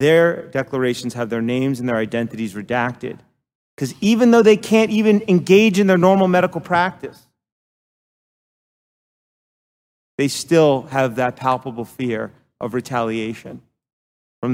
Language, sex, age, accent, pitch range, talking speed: English, male, 30-49, American, 110-130 Hz, 125 wpm